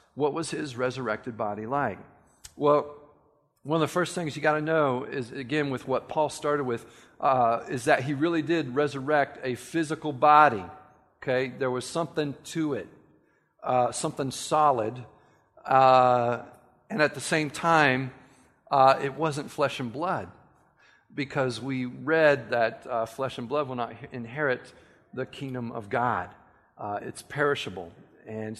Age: 50-69